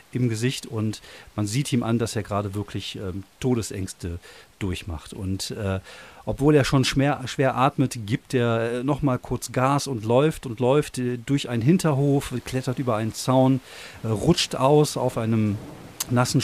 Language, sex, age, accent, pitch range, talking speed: German, male, 40-59, German, 115-135 Hz, 170 wpm